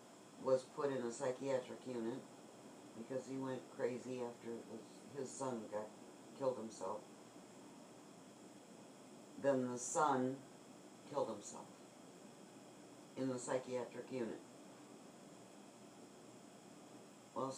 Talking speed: 95 wpm